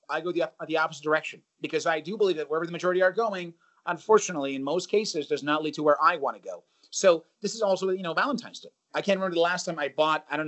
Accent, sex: American, male